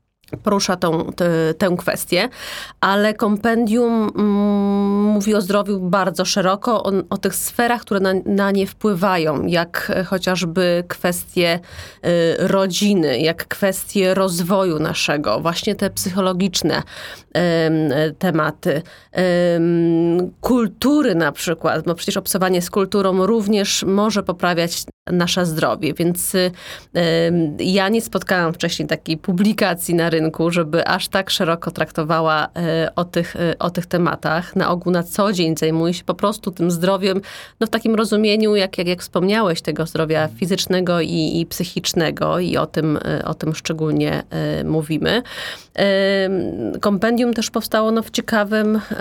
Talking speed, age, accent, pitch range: 125 wpm, 30-49, native, 170-200 Hz